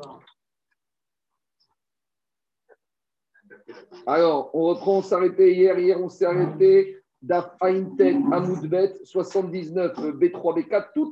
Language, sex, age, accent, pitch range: French, male, 50-69, French, 165-205 Hz